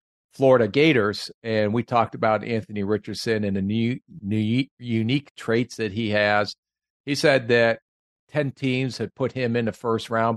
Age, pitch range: 50-69, 105-125 Hz